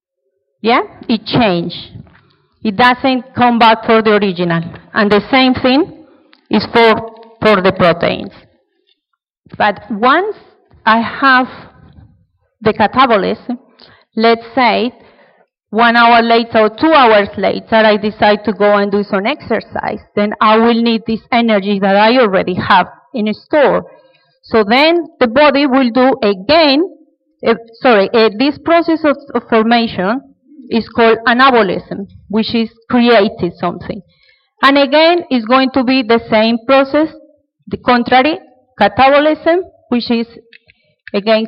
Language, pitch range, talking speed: English, 215-270 Hz, 125 wpm